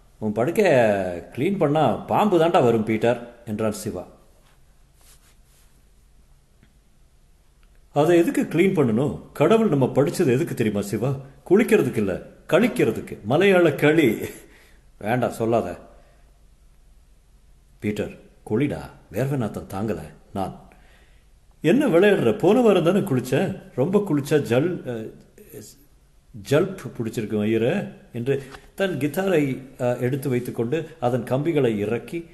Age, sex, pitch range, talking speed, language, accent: 50-69, male, 105-155 Hz, 60 wpm, Tamil, native